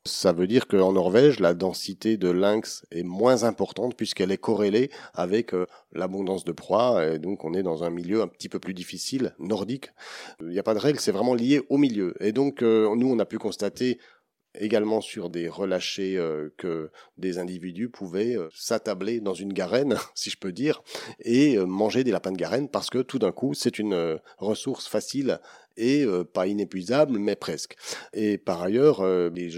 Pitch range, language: 95-120 Hz, French